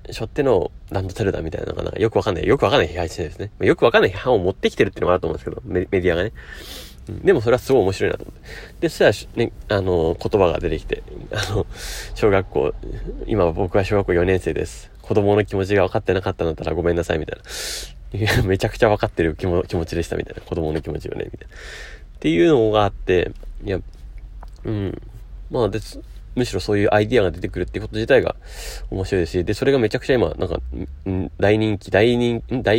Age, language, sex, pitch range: 30-49, Japanese, male, 85-115 Hz